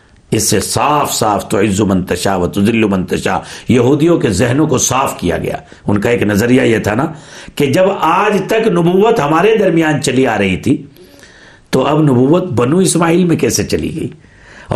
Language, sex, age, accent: English, male, 60-79, Indian